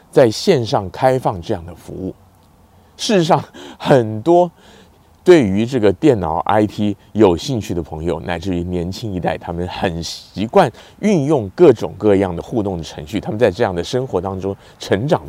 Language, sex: Chinese, male